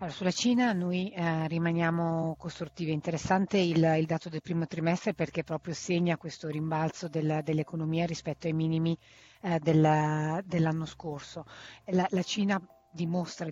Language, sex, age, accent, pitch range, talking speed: Italian, female, 30-49, native, 160-175 Hz, 140 wpm